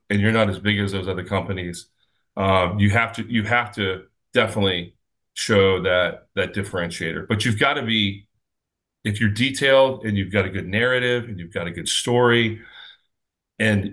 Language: English